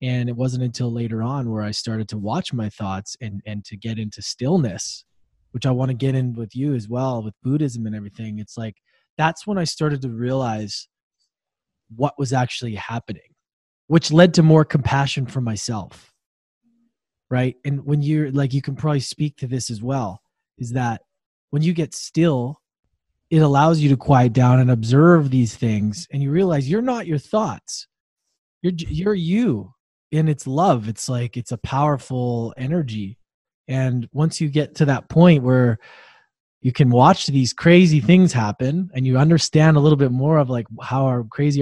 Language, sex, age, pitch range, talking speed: English, male, 20-39, 115-150 Hz, 180 wpm